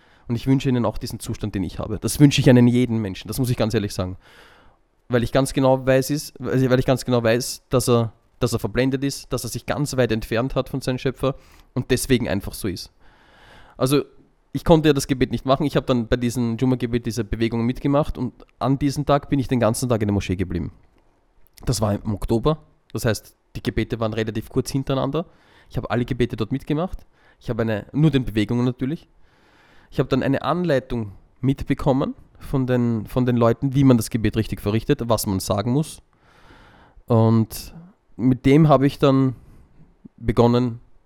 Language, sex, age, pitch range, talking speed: German, male, 20-39, 110-135 Hz, 200 wpm